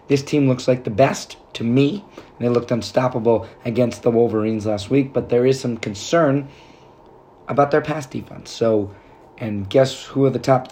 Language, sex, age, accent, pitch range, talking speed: English, male, 30-49, American, 110-135 Hz, 180 wpm